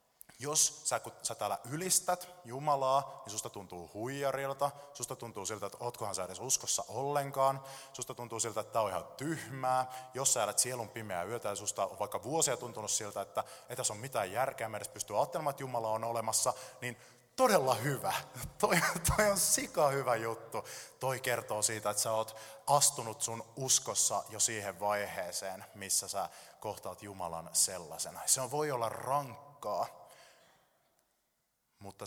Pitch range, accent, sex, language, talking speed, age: 100-135 Hz, native, male, Finnish, 155 wpm, 20-39